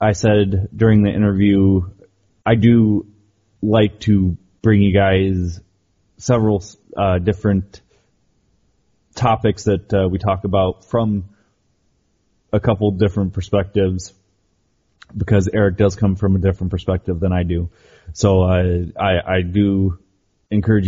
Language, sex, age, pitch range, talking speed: English, male, 20-39, 95-110 Hz, 125 wpm